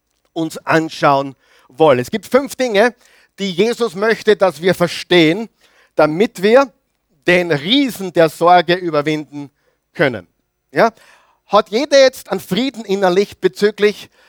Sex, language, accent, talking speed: male, German, German, 120 wpm